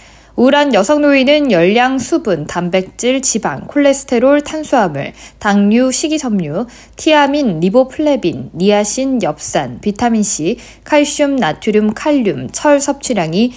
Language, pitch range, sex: Korean, 190-260 Hz, female